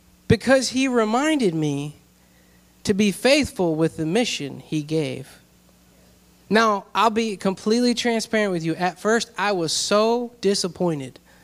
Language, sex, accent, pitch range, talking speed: English, male, American, 180-245 Hz, 130 wpm